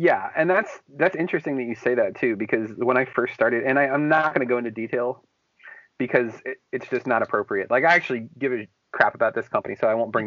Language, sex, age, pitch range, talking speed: English, male, 30-49, 120-160 Hz, 240 wpm